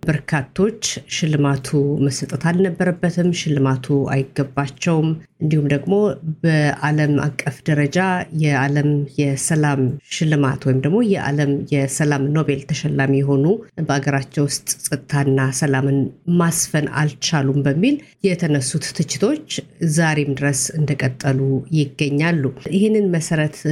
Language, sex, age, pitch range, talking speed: Amharic, female, 50-69, 140-170 Hz, 90 wpm